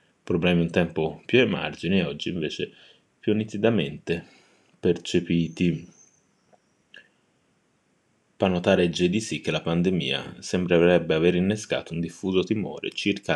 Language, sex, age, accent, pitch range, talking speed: Italian, male, 30-49, native, 85-100 Hz, 110 wpm